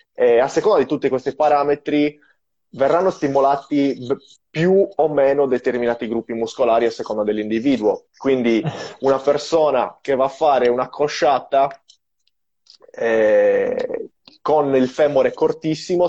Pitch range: 120-170 Hz